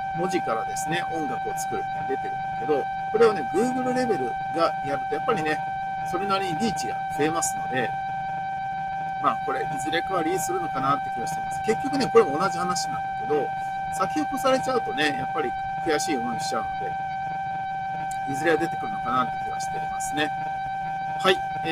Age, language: 50-69, Japanese